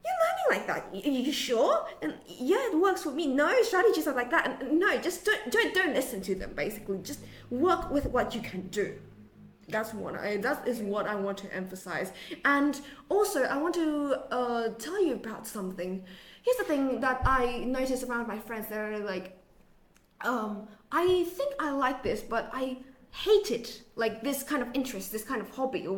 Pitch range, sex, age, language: 220-290 Hz, female, 20-39, Chinese